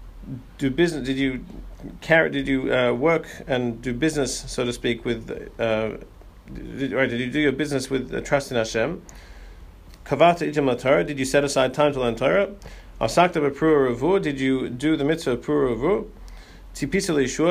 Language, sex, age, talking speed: English, male, 40-59, 145 wpm